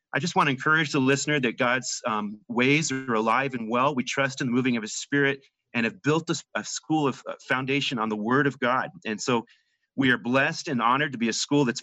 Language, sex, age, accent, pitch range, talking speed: English, male, 30-49, American, 120-145 Hz, 240 wpm